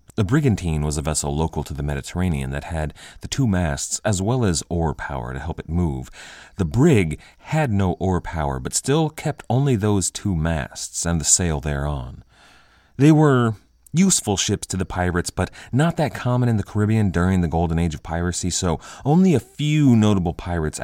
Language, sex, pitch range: English, male, 75-110 Hz